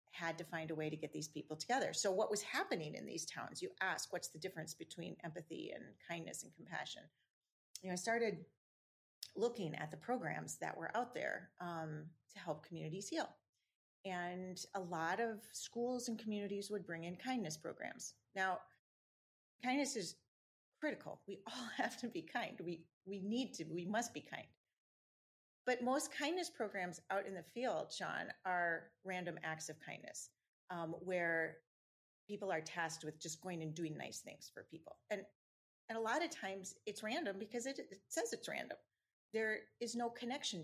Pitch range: 170-235 Hz